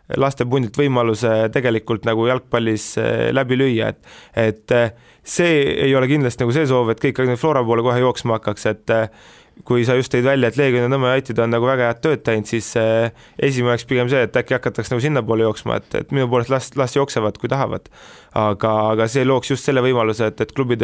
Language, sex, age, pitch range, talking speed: English, male, 20-39, 110-130 Hz, 200 wpm